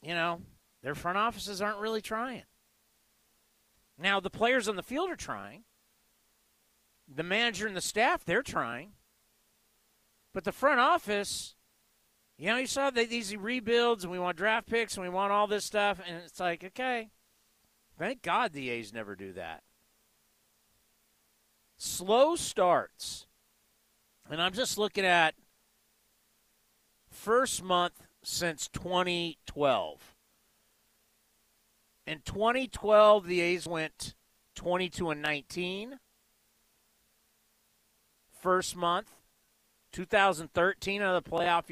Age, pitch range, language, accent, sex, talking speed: 50-69, 150-210 Hz, English, American, male, 120 wpm